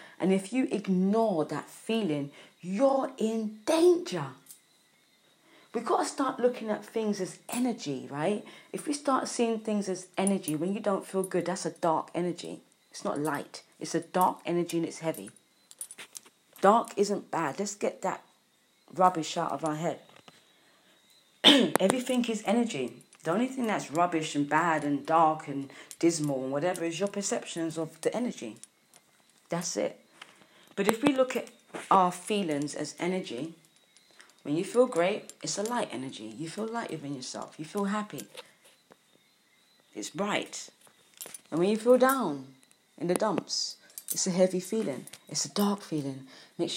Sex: female